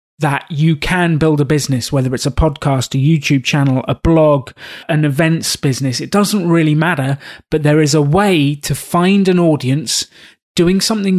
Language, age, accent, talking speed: English, 30-49, British, 175 wpm